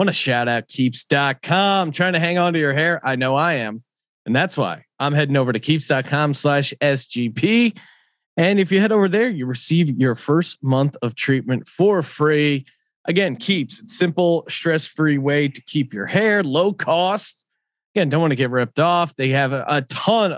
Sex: male